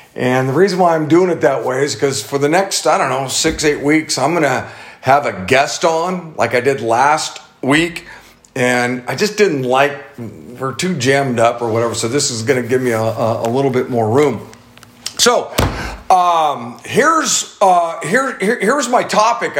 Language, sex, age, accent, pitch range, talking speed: English, male, 50-69, American, 130-175 Hz, 200 wpm